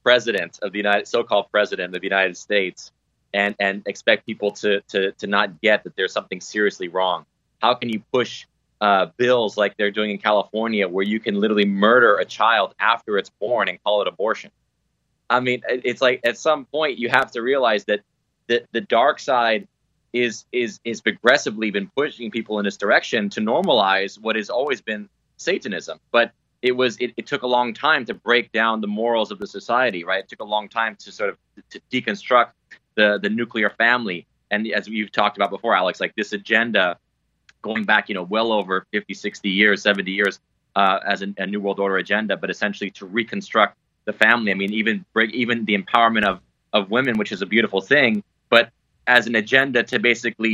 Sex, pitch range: male, 100-120 Hz